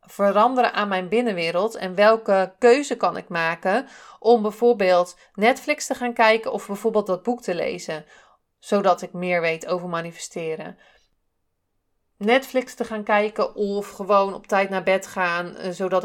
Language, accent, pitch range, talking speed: Dutch, Dutch, 185-220 Hz, 150 wpm